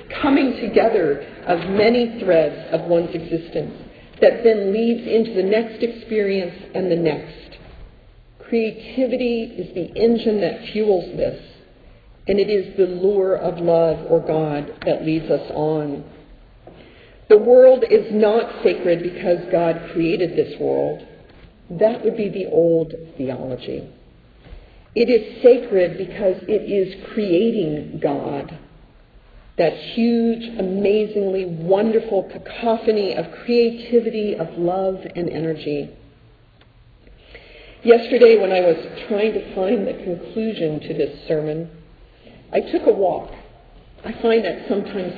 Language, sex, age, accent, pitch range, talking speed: English, female, 50-69, American, 165-230 Hz, 125 wpm